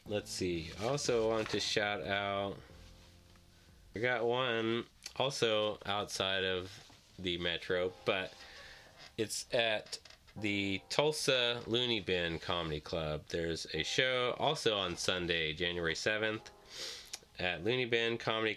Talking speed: 120 wpm